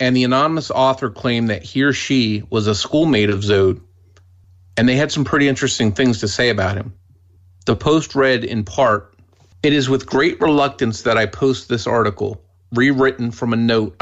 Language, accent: English, American